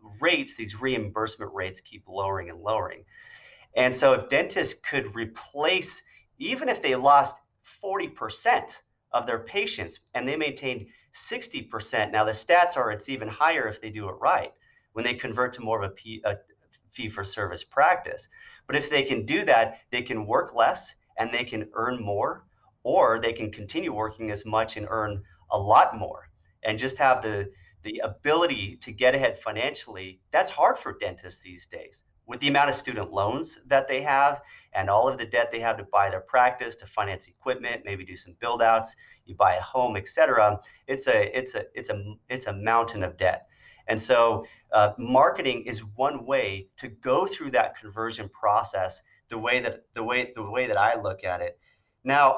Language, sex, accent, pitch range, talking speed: English, male, American, 105-130 Hz, 185 wpm